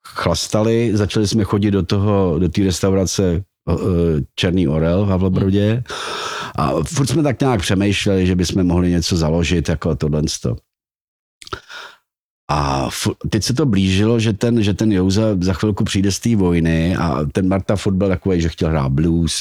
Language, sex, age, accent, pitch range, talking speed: Czech, male, 50-69, native, 80-100 Hz, 160 wpm